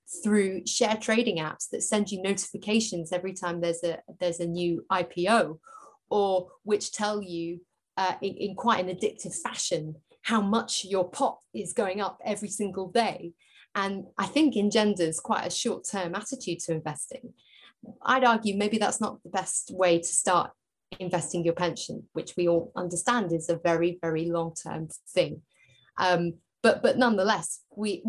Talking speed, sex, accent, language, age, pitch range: 160 wpm, female, British, English, 30-49, 170-210 Hz